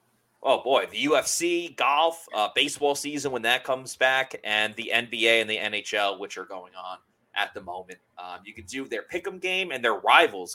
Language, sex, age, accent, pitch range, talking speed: English, male, 30-49, American, 110-160 Hz, 200 wpm